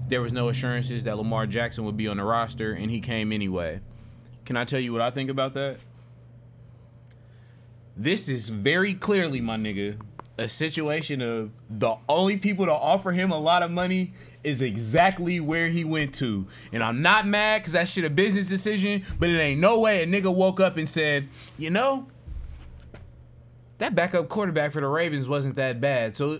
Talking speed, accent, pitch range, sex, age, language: 190 wpm, American, 120-170 Hz, male, 20-39, English